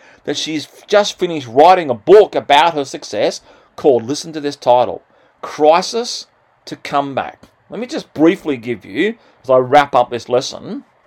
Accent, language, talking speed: Australian, English, 170 wpm